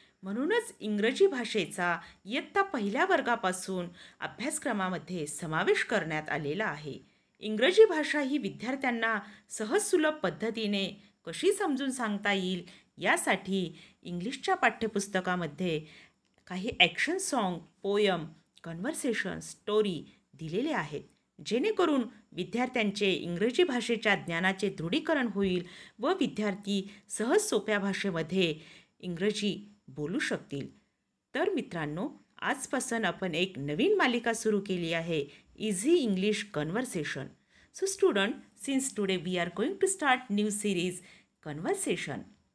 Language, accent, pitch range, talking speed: Marathi, native, 180-260 Hz, 100 wpm